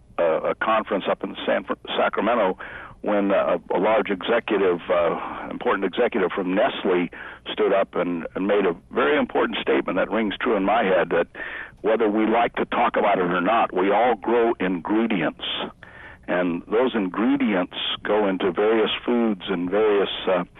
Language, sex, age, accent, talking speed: English, male, 60-79, American, 160 wpm